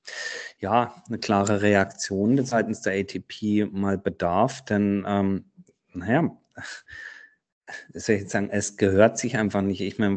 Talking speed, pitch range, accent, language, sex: 135 wpm, 100-110 Hz, German, German, male